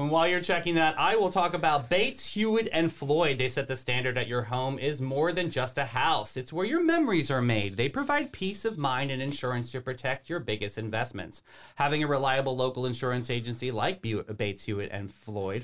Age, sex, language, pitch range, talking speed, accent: 30-49, male, English, 125-175 Hz, 210 wpm, American